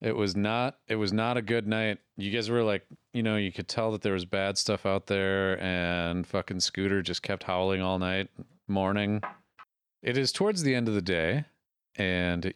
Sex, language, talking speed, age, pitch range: male, English, 205 wpm, 30-49, 95-115 Hz